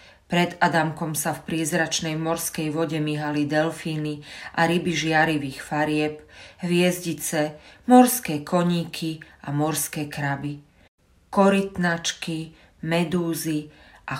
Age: 40-59